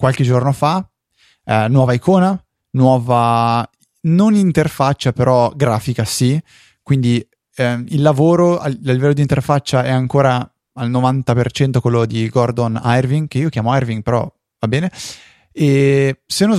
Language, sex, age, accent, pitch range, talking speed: Italian, male, 20-39, native, 115-135 Hz, 140 wpm